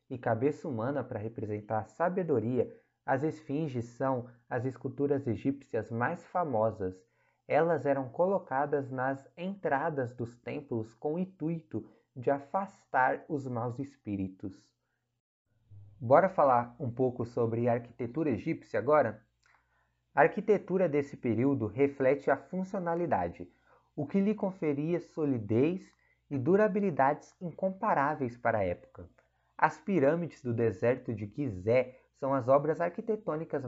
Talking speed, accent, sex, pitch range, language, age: 120 wpm, Brazilian, male, 120-165 Hz, Portuguese, 20-39